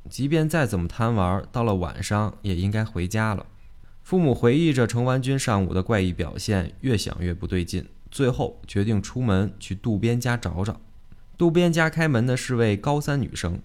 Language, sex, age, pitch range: Chinese, male, 20-39, 95-135 Hz